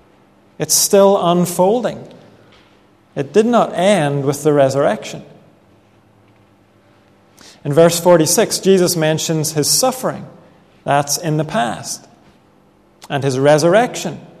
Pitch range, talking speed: 150-185 Hz, 100 wpm